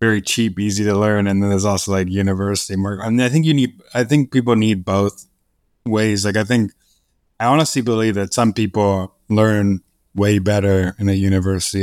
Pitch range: 95-110 Hz